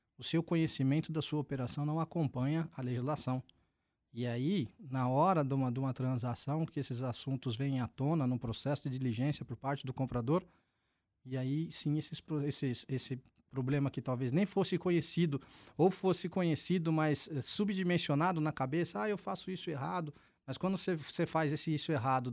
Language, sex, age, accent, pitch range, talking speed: Portuguese, male, 20-39, Brazilian, 125-155 Hz, 165 wpm